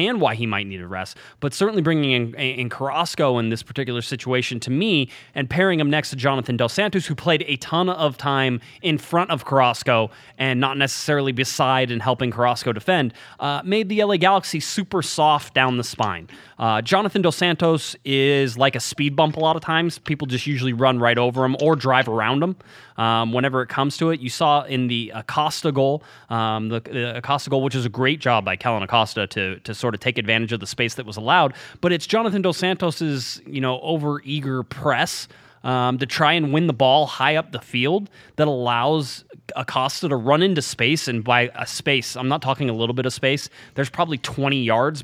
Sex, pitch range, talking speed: male, 120-150 Hz, 210 wpm